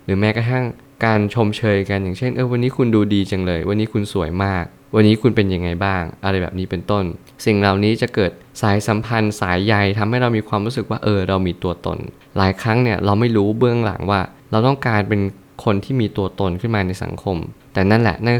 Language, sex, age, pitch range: Thai, male, 20-39, 95-120 Hz